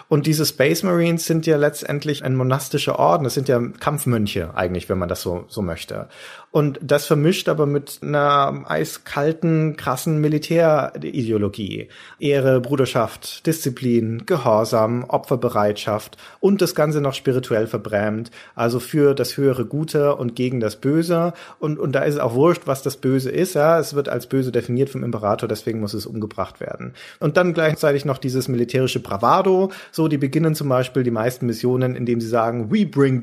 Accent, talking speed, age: German, 170 wpm, 40-59